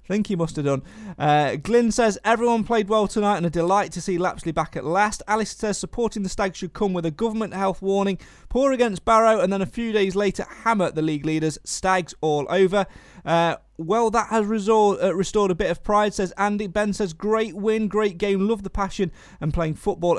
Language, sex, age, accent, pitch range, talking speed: English, male, 30-49, British, 165-210 Hz, 215 wpm